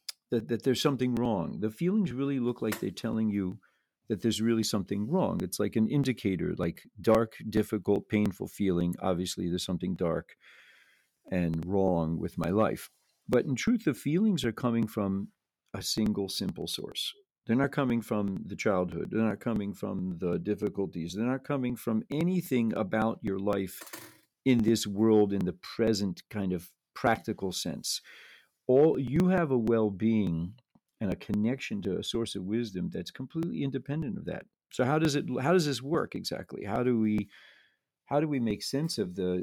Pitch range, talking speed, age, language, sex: 95-125 Hz, 175 wpm, 50-69, English, male